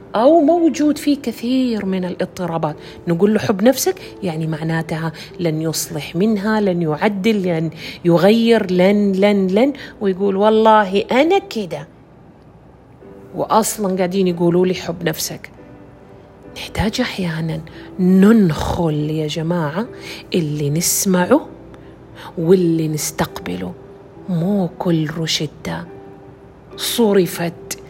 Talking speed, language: 95 wpm, Arabic